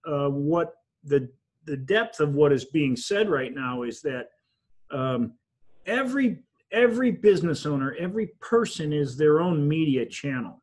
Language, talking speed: English, 145 wpm